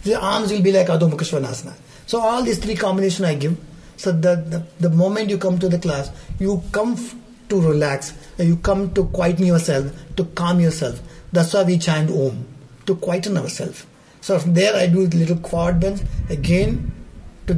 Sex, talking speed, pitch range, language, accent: male, 180 wpm, 155-195 Hz, English, Indian